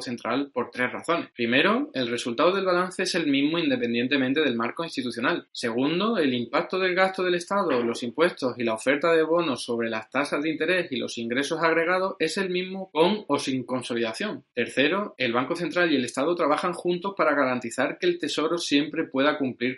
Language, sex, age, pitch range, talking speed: Spanish, male, 20-39, 125-170 Hz, 190 wpm